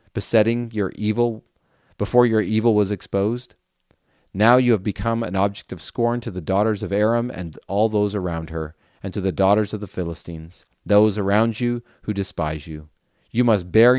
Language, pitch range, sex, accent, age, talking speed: English, 85-110 Hz, male, American, 30-49, 180 wpm